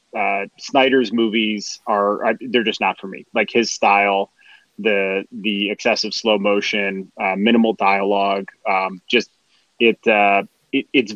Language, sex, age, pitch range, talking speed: English, male, 30-49, 100-120 Hz, 140 wpm